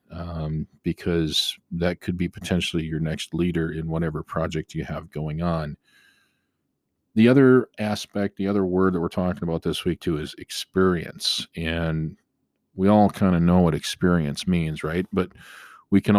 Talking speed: 165 wpm